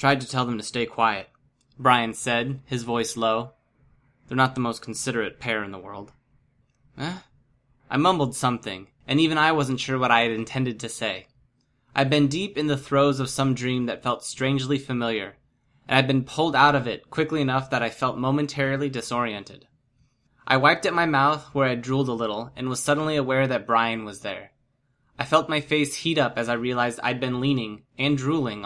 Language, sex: English, male